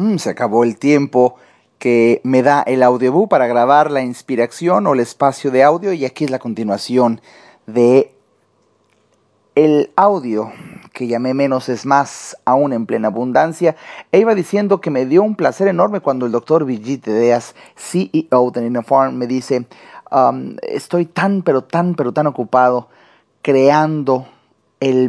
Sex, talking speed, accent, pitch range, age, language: male, 155 wpm, Mexican, 120-150 Hz, 40-59, Spanish